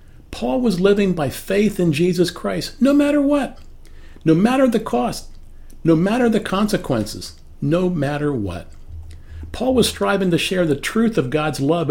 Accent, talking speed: American, 160 wpm